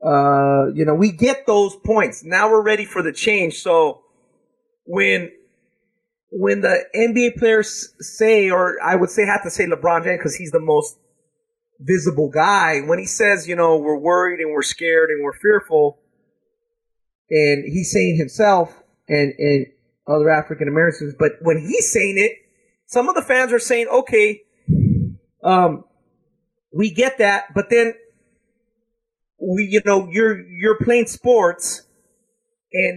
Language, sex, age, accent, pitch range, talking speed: English, male, 30-49, American, 160-230 Hz, 150 wpm